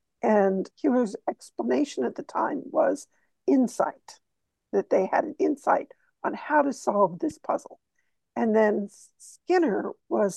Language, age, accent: English, 60-79, American